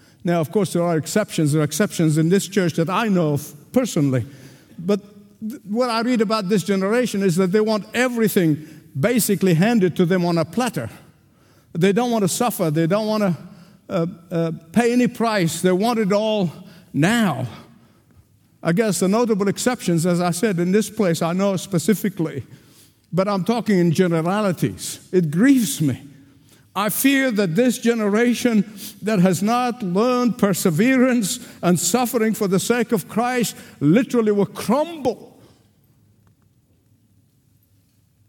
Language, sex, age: English, male, 50-69